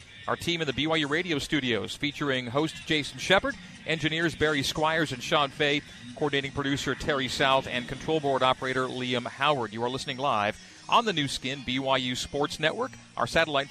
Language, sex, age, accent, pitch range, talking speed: English, male, 40-59, American, 125-150 Hz, 175 wpm